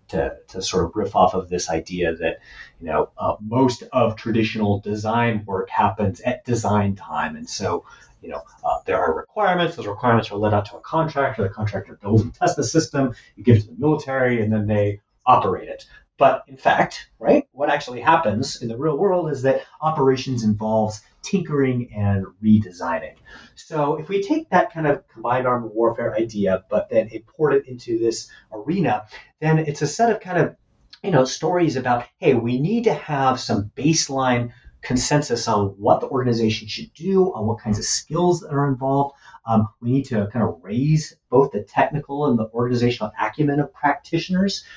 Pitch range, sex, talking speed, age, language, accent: 110-160 Hz, male, 190 wpm, 30-49, English, American